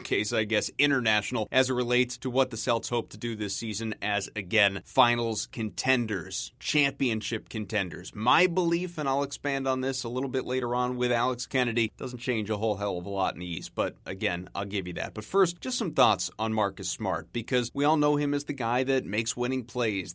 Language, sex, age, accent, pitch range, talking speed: English, male, 30-49, American, 115-140 Hz, 220 wpm